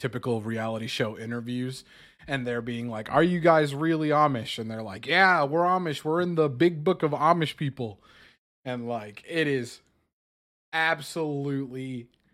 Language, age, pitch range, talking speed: English, 20-39, 110-140 Hz, 155 wpm